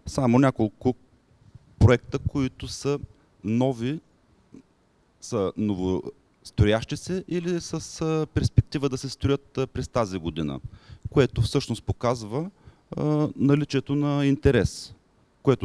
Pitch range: 100-130 Hz